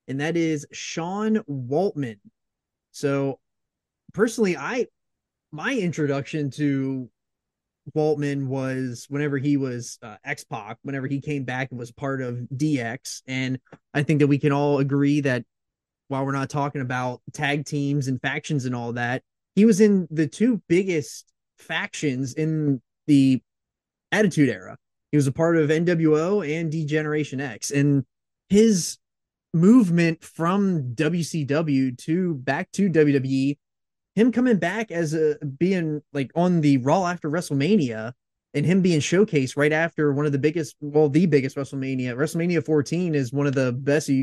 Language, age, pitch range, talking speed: English, 20-39, 135-165 Hz, 150 wpm